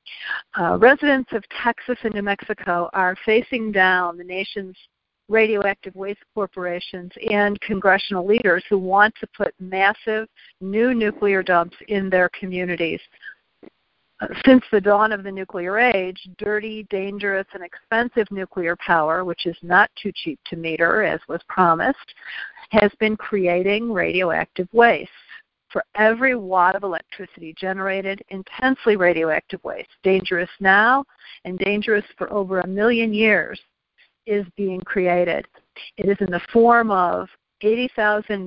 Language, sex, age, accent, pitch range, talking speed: English, female, 50-69, American, 185-220 Hz, 135 wpm